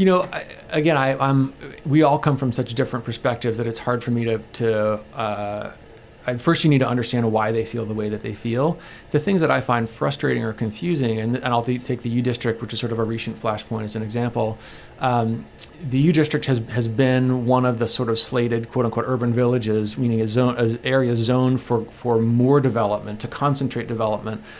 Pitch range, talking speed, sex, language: 115-135 Hz, 220 wpm, male, English